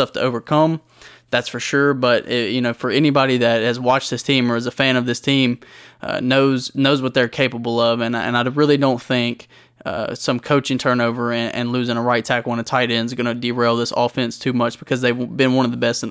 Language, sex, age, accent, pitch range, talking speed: English, male, 20-39, American, 120-135 Hz, 240 wpm